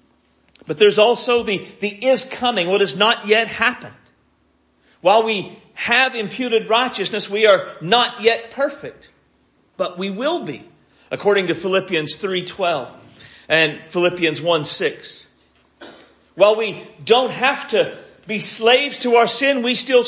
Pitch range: 135-210 Hz